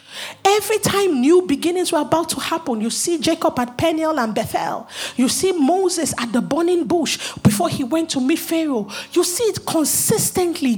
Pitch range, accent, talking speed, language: 265-370 Hz, Nigerian, 180 wpm, English